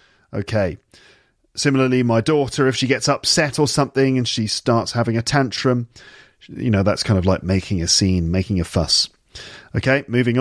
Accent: British